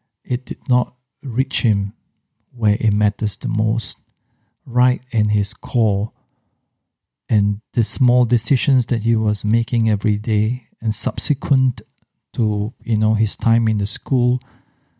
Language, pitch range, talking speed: English, 110-130 Hz, 135 wpm